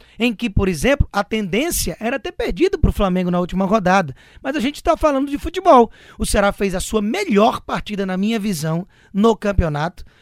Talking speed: 200 wpm